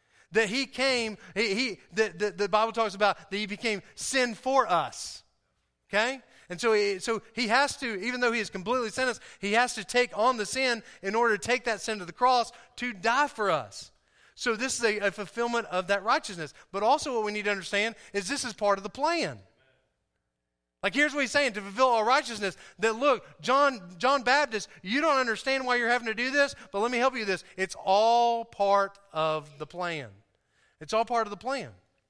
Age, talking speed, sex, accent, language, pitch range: 30-49, 215 wpm, male, American, English, 180-245 Hz